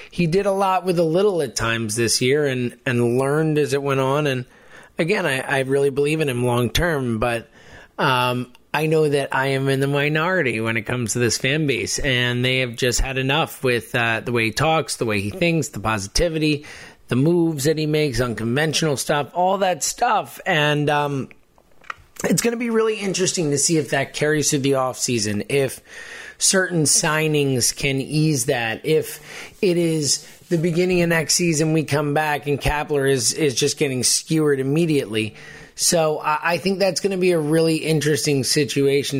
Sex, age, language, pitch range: male, 30-49, English, 125-155 Hz